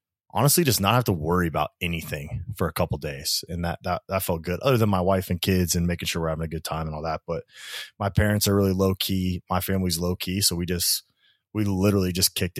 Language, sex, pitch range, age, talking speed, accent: English, male, 90-110 Hz, 20-39, 255 wpm, American